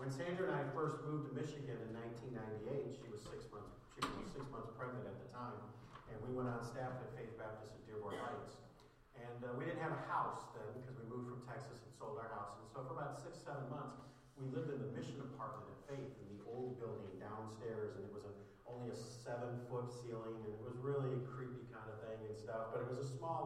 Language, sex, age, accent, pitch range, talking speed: English, male, 40-59, American, 120-140 Hz, 240 wpm